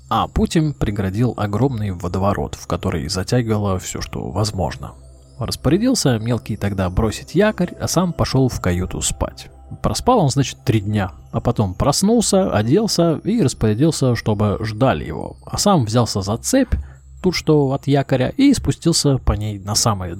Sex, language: male, Russian